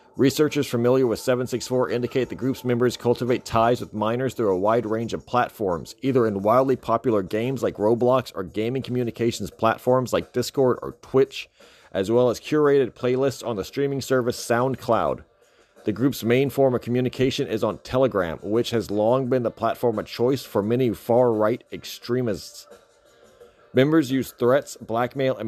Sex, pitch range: male, 115-130 Hz